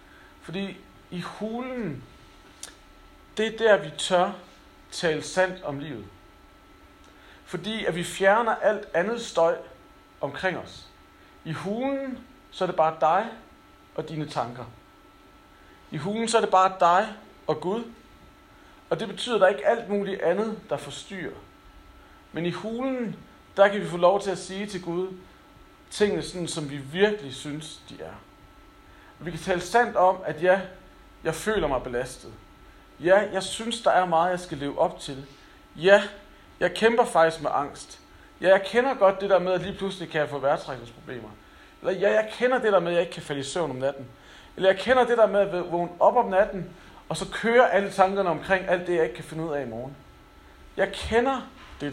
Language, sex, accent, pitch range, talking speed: Danish, male, native, 145-205 Hz, 185 wpm